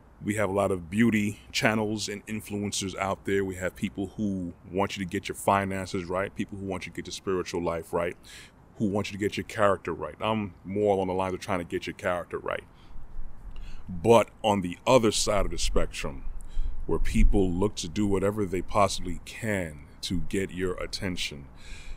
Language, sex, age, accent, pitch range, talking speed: English, male, 30-49, American, 85-105 Hz, 200 wpm